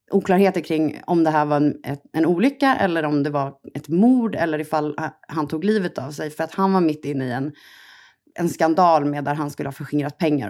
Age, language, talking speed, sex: 30-49, Swedish, 230 wpm, female